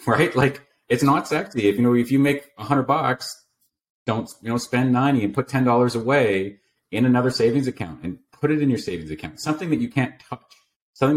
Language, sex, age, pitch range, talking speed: English, male, 30-49, 95-135 Hz, 215 wpm